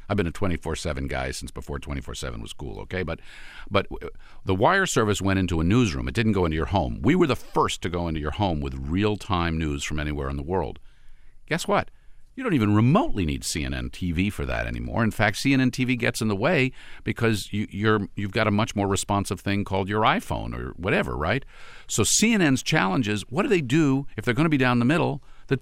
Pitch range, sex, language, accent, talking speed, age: 90-120 Hz, male, English, American, 225 wpm, 50-69